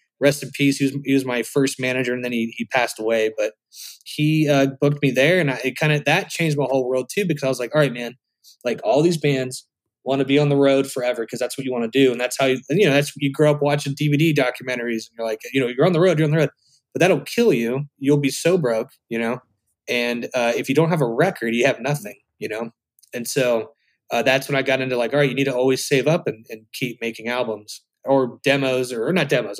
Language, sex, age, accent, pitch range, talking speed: English, male, 20-39, American, 120-150 Hz, 275 wpm